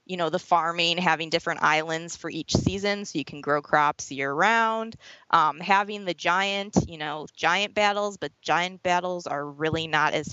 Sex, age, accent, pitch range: female, 20-39, American, 155-200 Hz